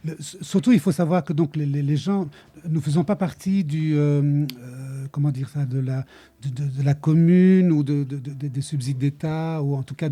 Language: French